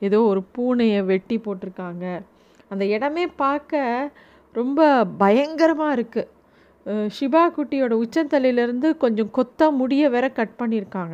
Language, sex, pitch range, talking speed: Tamil, female, 210-265 Hz, 100 wpm